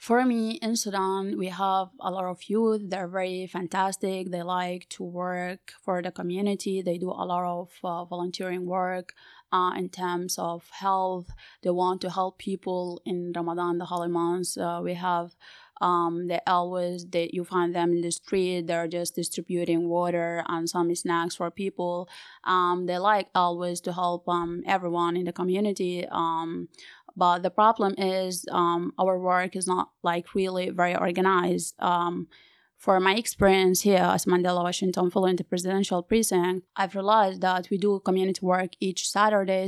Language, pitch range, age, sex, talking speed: English, 175-190 Hz, 20-39, female, 165 wpm